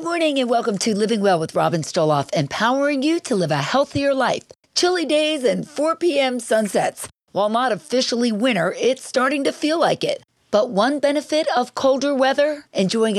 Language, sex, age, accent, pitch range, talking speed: English, female, 50-69, American, 180-260 Hz, 180 wpm